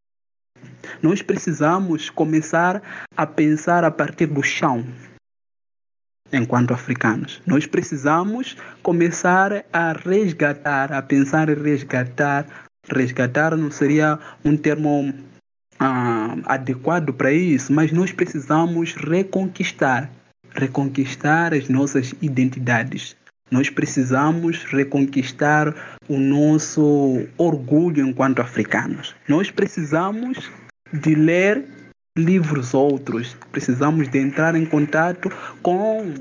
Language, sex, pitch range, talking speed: Portuguese, male, 135-170 Hz, 95 wpm